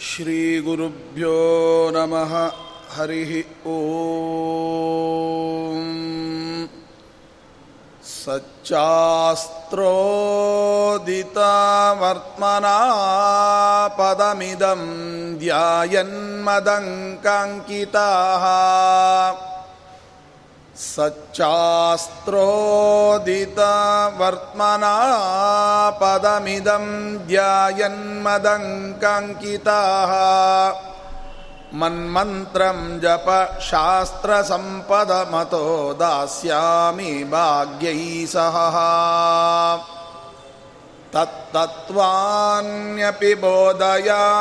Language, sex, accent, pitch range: Kannada, male, native, 165-205 Hz